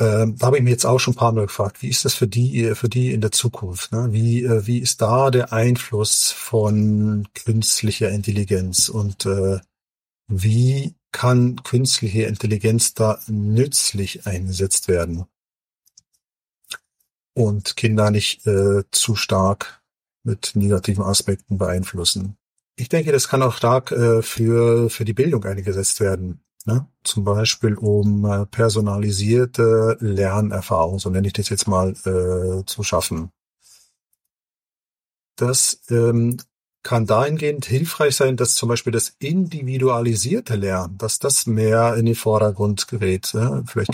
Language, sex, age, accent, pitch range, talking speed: German, male, 50-69, German, 100-120 Hz, 130 wpm